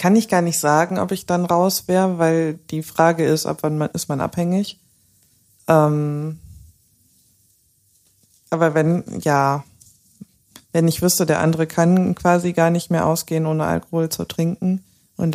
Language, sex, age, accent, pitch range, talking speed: German, female, 20-39, German, 160-185 Hz, 155 wpm